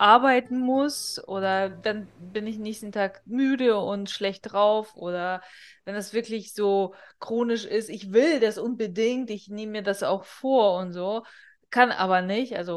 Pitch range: 185-225 Hz